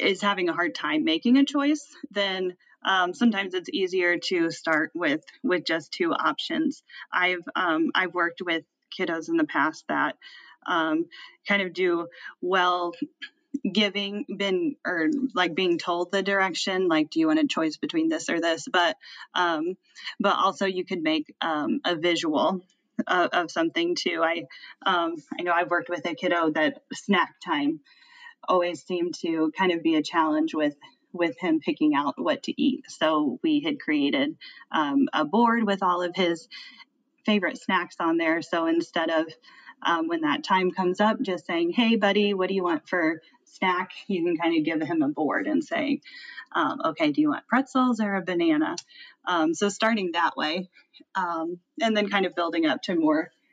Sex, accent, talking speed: female, American, 180 wpm